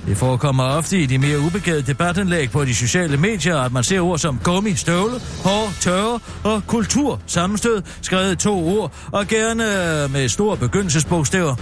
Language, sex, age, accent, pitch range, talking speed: Danish, male, 60-79, native, 135-205 Hz, 165 wpm